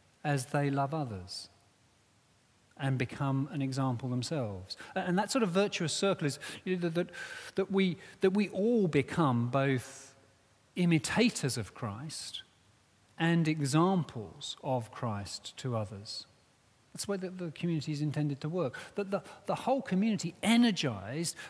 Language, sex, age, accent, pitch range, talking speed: English, male, 40-59, British, 110-165 Hz, 140 wpm